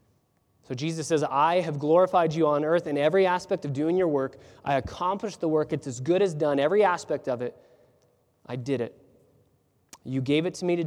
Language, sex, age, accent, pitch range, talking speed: English, male, 20-39, American, 130-175 Hz, 210 wpm